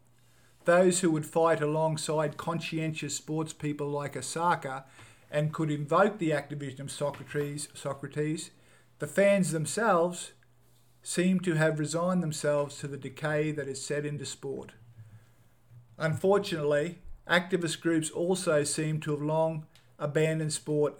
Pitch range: 130-160 Hz